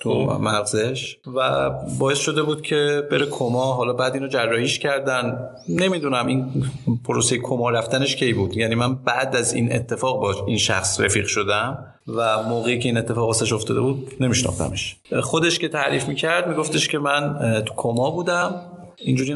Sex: male